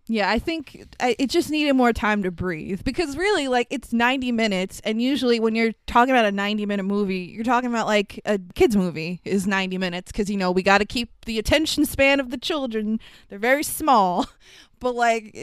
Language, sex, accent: English, female, American